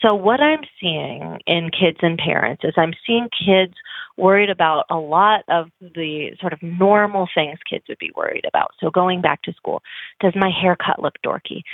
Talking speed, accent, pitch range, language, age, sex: 190 wpm, American, 165-220 Hz, English, 30-49, female